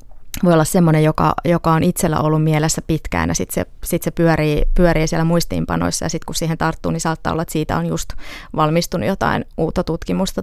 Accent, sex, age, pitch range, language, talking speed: native, female, 20-39, 160-180 Hz, Finnish, 195 wpm